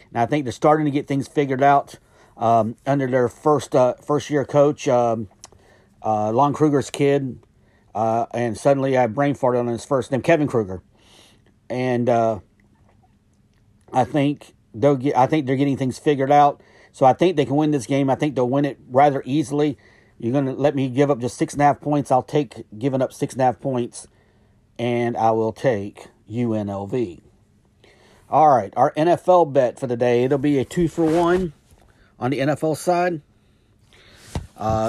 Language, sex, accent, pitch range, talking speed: English, male, American, 110-145 Hz, 185 wpm